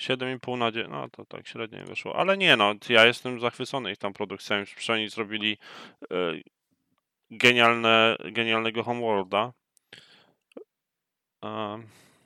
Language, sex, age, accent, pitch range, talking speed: Polish, male, 20-39, native, 105-120 Hz, 115 wpm